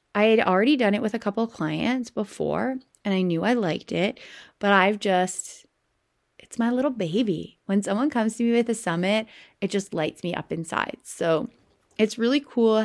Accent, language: American, English